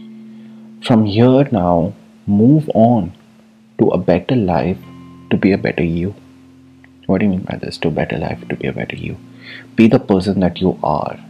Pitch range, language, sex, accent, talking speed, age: 95-115 Hz, English, male, Indian, 185 wpm, 30-49